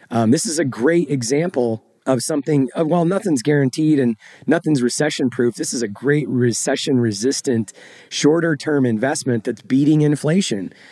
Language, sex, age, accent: English, male, 30-49, American